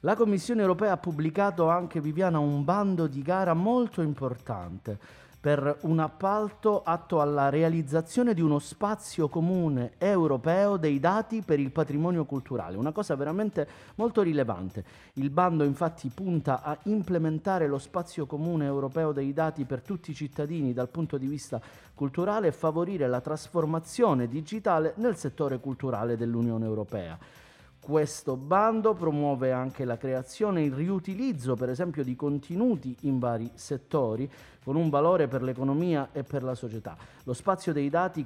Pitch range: 130-170 Hz